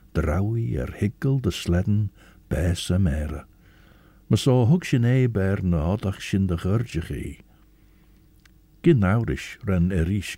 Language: English